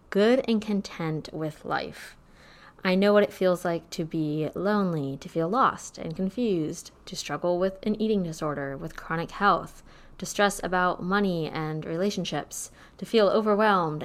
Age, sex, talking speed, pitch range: 20-39, female, 160 wpm, 165-205 Hz